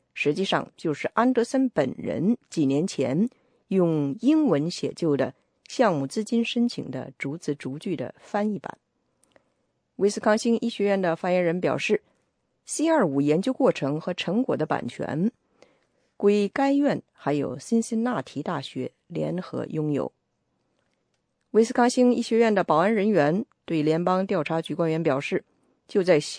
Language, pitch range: English, 155-230 Hz